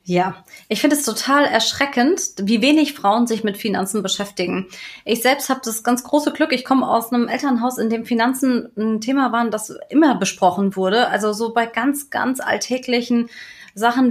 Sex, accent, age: female, German, 20-39